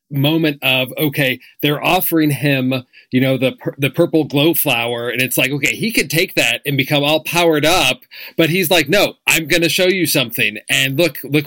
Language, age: English, 40-59